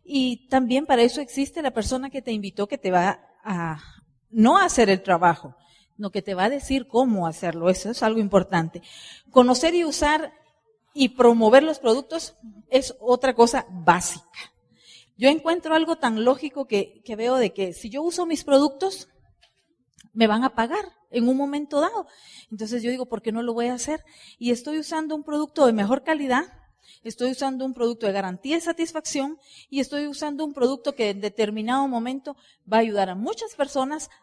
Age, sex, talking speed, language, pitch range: 40-59, female, 185 wpm, Spanish, 205-280 Hz